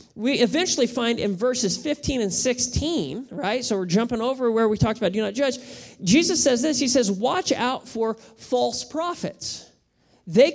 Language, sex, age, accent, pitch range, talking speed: English, male, 40-59, American, 185-260 Hz, 175 wpm